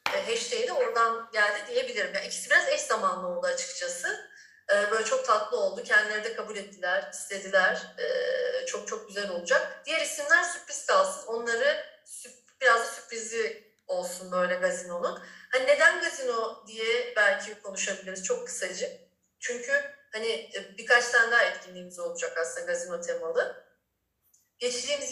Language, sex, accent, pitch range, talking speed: Turkish, female, native, 210-345 Hz, 130 wpm